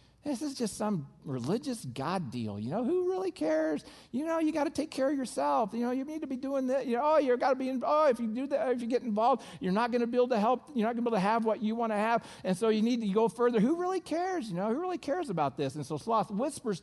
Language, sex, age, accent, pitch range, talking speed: English, male, 50-69, American, 150-245 Hz, 315 wpm